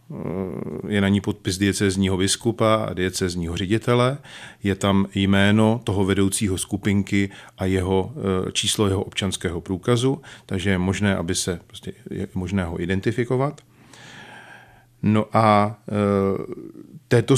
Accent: native